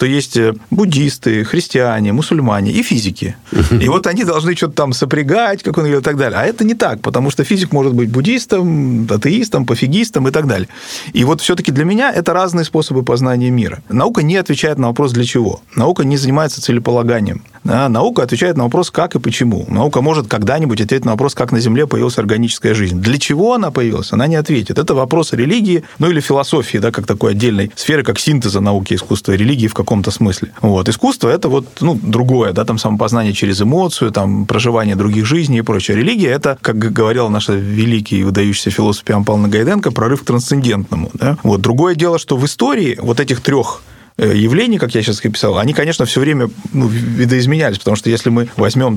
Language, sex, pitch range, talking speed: Russian, male, 110-150 Hz, 195 wpm